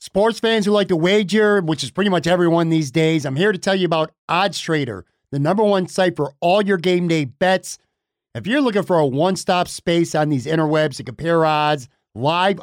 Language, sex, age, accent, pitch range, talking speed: English, male, 50-69, American, 145-180 Hz, 210 wpm